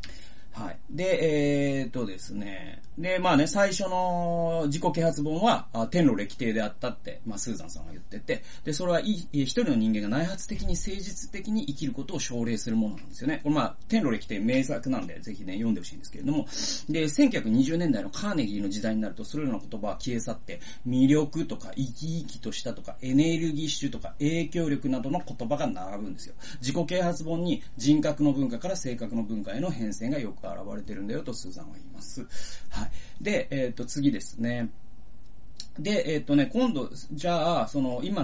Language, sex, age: Japanese, male, 30-49